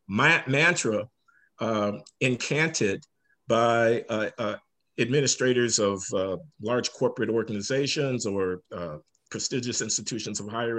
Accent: American